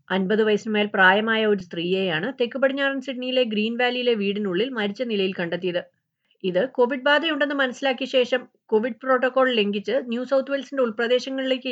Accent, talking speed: native, 140 wpm